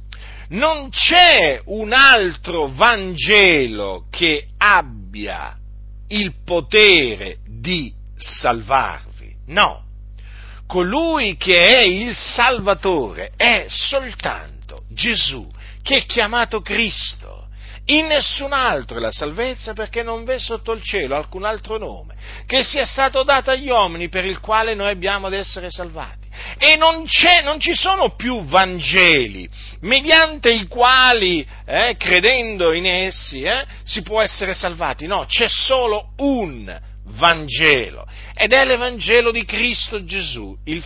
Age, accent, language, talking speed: 50-69, native, Italian, 125 wpm